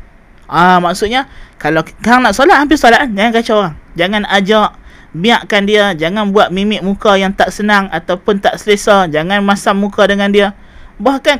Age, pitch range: 20-39, 175-215 Hz